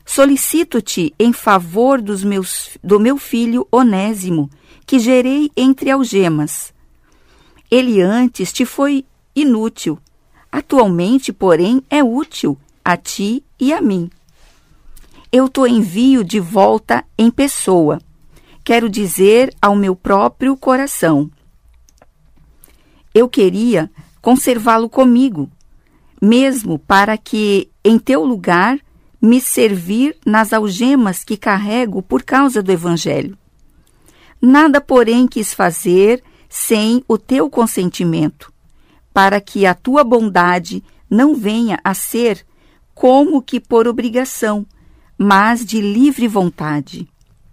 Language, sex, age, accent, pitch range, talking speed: Portuguese, female, 50-69, Brazilian, 190-255 Hz, 105 wpm